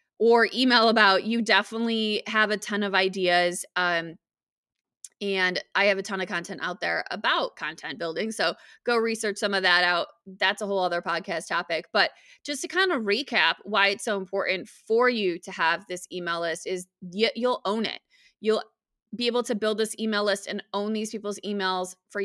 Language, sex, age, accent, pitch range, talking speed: English, female, 20-39, American, 195-245 Hz, 190 wpm